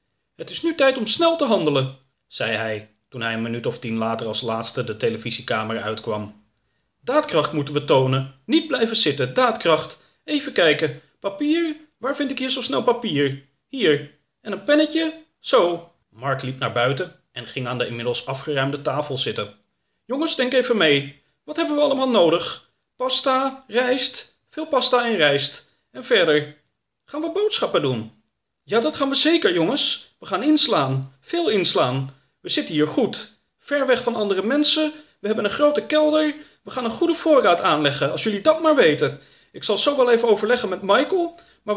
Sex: male